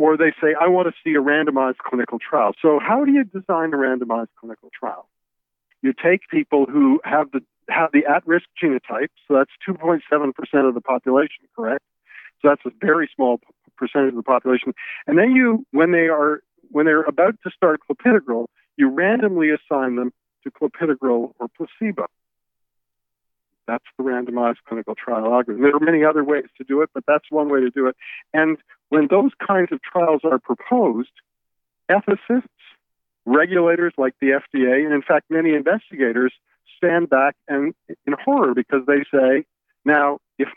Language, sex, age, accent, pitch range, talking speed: English, male, 50-69, American, 125-165 Hz, 170 wpm